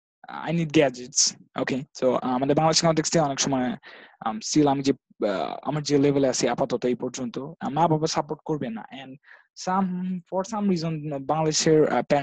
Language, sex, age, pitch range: Hindi, male, 20-39, 130-165 Hz